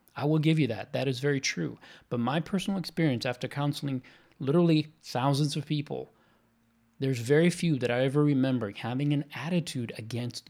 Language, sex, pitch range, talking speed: English, male, 120-155 Hz, 170 wpm